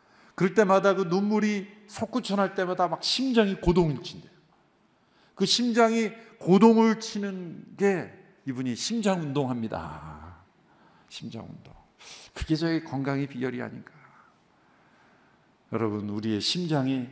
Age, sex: 50-69, male